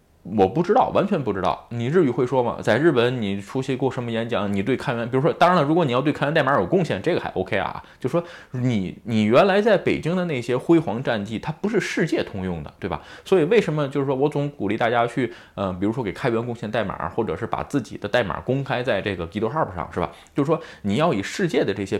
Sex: male